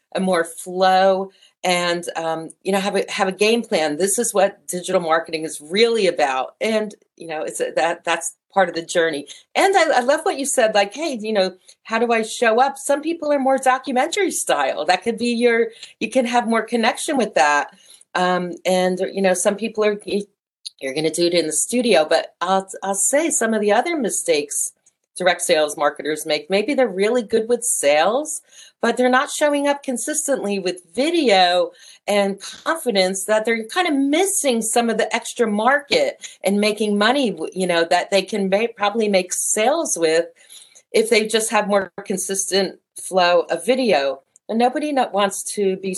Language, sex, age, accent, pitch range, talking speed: English, female, 40-59, American, 185-250 Hz, 190 wpm